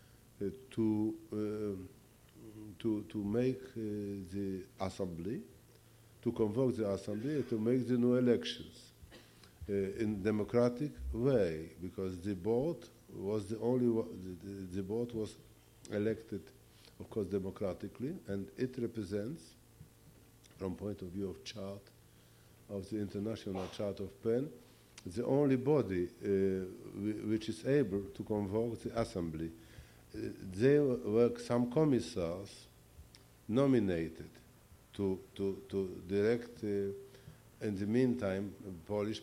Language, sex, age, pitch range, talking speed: English, male, 50-69, 100-120 Hz, 120 wpm